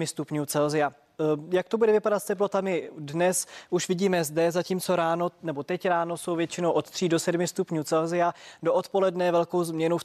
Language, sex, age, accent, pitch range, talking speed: Czech, male, 20-39, native, 155-180 Hz, 180 wpm